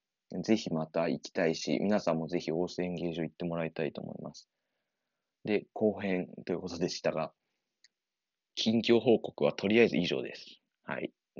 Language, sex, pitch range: Japanese, male, 85-115 Hz